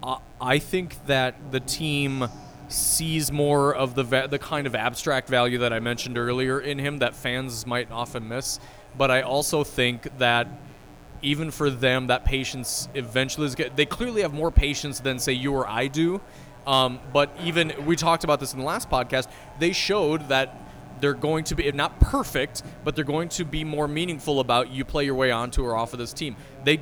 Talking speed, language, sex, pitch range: 200 wpm, English, male, 125-150 Hz